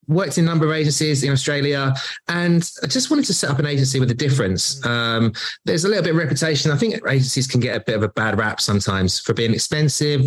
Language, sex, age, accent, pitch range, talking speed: English, male, 20-39, British, 110-145 Hz, 245 wpm